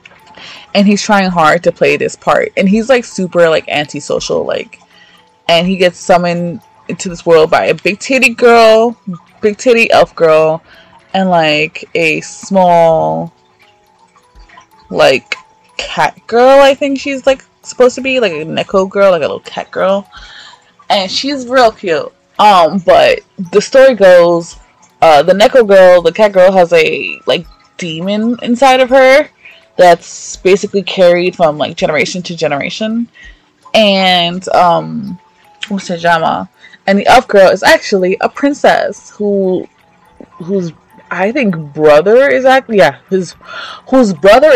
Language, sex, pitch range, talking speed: English, female, 175-265 Hz, 145 wpm